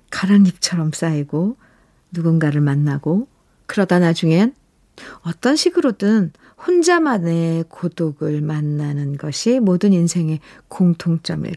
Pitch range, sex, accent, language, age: 165-230 Hz, female, native, Korean, 50-69